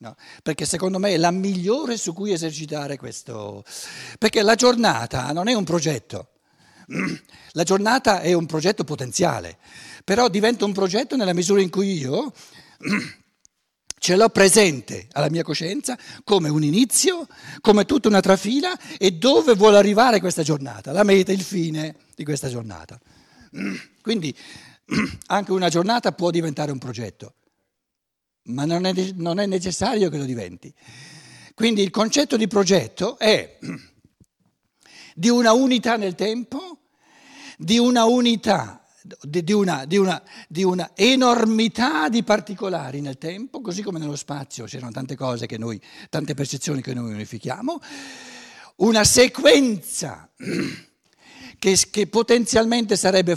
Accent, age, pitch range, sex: native, 60-79, 155-225 Hz, male